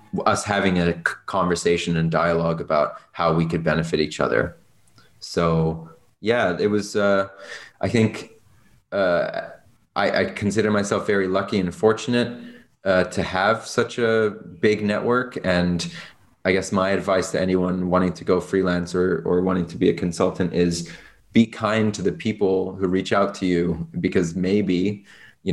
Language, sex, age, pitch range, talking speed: English, male, 30-49, 85-100 Hz, 160 wpm